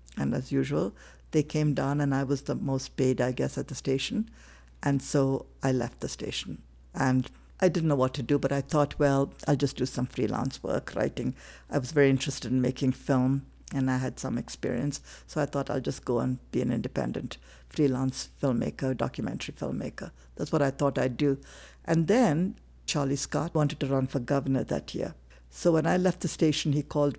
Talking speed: 205 wpm